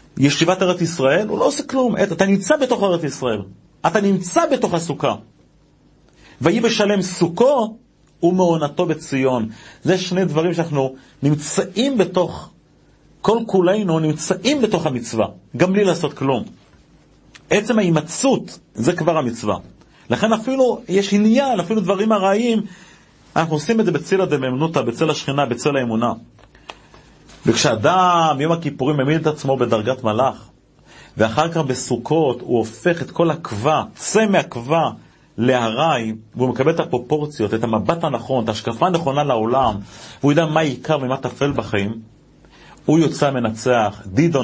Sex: male